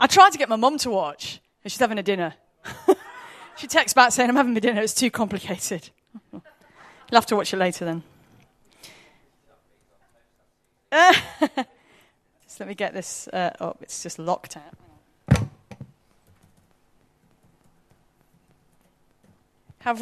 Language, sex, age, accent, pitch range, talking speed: English, female, 30-49, British, 190-255 Hz, 130 wpm